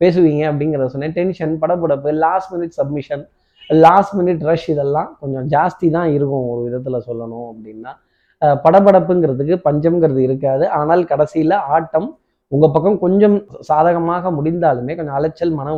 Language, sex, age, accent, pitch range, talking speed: Tamil, male, 20-39, native, 140-170 Hz, 130 wpm